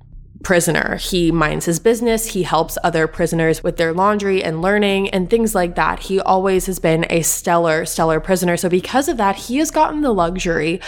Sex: female